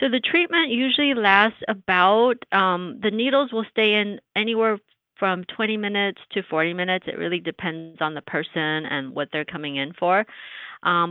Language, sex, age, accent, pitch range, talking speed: English, female, 40-59, American, 155-210 Hz, 175 wpm